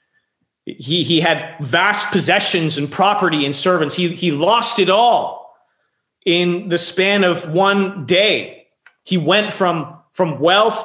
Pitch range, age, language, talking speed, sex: 150-180 Hz, 30-49, English, 140 wpm, male